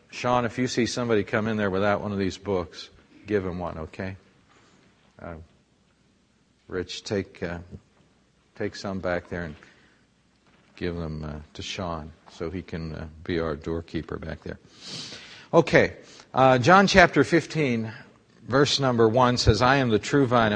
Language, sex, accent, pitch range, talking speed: English, male, American, 100-130 Hz, 160 wpm